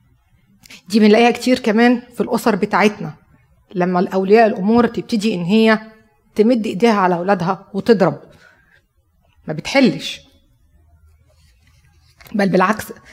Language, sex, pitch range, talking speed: Arabic, female, 180-225 Hz, 100 wpm